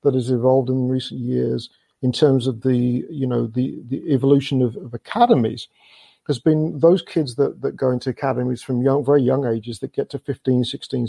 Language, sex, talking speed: English, male, 200 wpm